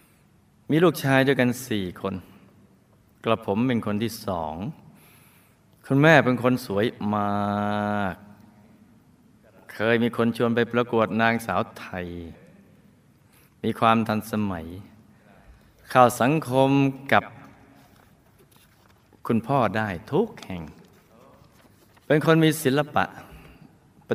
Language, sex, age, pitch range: Thai, male, 20-39, 105-125 Hz